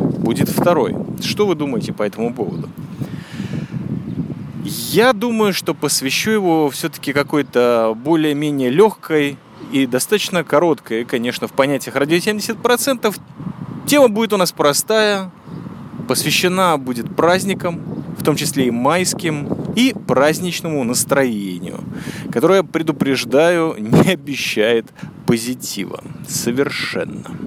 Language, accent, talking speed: Russian, native, 105 wpm